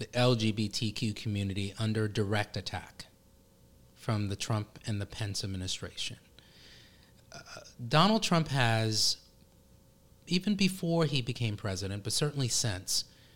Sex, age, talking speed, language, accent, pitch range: male, 30-49, 110 wpm, English, American, 110-145 Hz